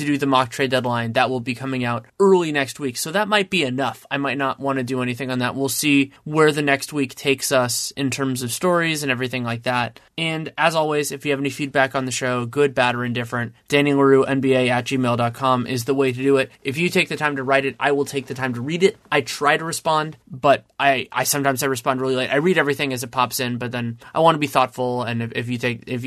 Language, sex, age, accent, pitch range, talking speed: English, male, 20-39, American, 125-145 Hz, 260 wpm